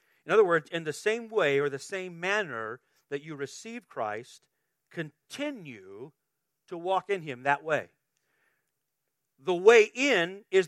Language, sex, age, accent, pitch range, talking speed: English, male, 40-59, American, 140-195 Hz, 145 wpm